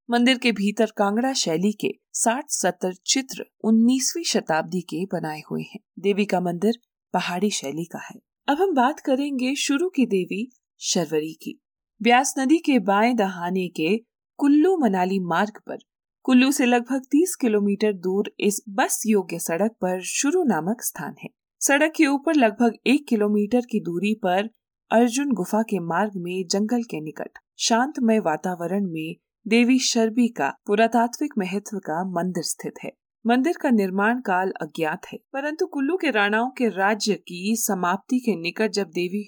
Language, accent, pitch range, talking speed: Hindi, native, 185-245 Hz, 155 wpm